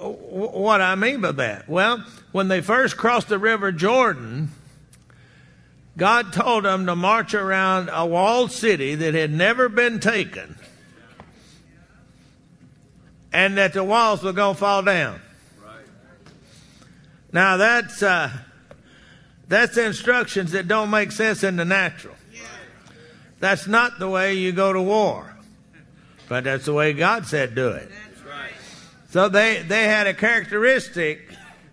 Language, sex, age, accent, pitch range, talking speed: English, male, 60-79, American, 175-220 Hz, 130 wpm